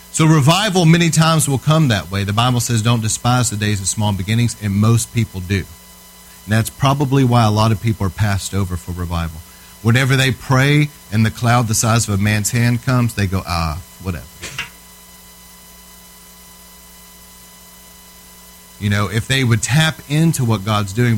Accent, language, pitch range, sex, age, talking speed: American, English, 90-120 Hz, male, 40-59, 175 wpm